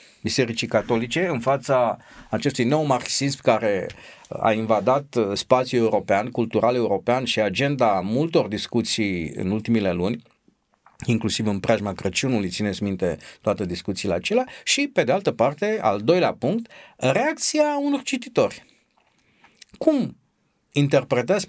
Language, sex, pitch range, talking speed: Romanian, male, 105-140 Hz, 115 wpm